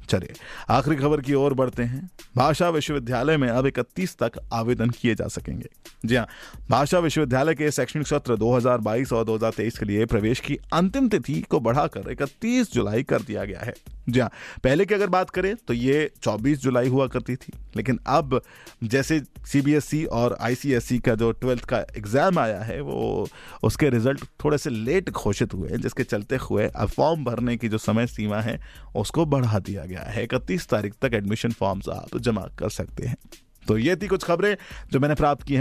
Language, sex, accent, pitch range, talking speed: Hindi, male, native, 115-150 Hz, 180 wpm